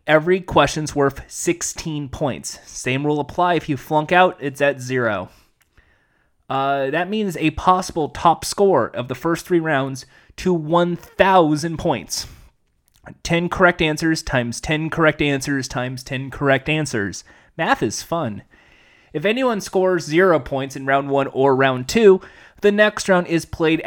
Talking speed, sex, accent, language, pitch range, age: 150 wpm, male, American, English, 130-180 Hz, 30-49